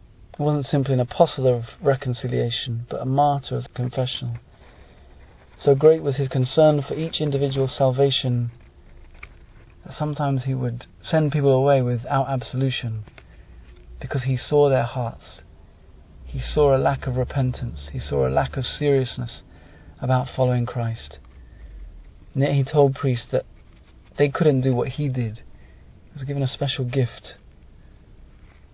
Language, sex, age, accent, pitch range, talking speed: English, male, 40-59, British, 105-135 Hz, 140 wpm